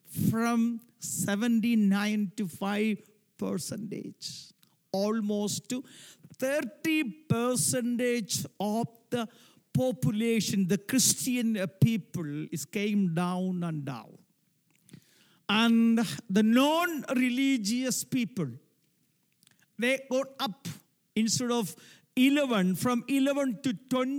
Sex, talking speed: male, 80 wpm